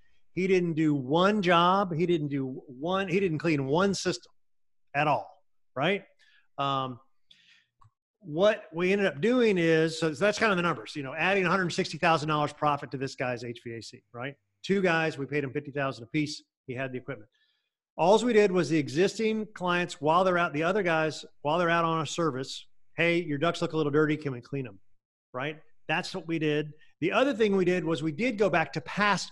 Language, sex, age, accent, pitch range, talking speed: English, male, 40-59, American, 140-180 Hz, 215 wpm